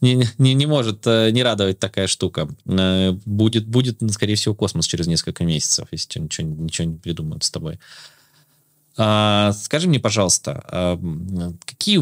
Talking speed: 135 wpm